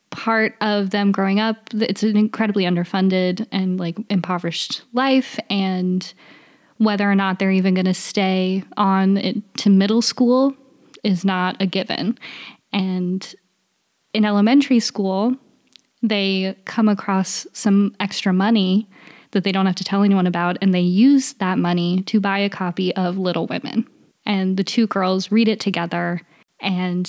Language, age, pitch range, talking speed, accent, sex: English, 20-39, 185-215 Hz, 150 wpm, American, female